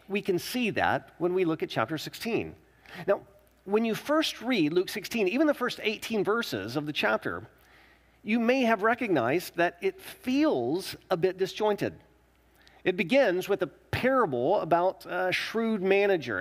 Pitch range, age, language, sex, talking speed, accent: 165-225 Hz, 40-59, English, male, 160 wpm, American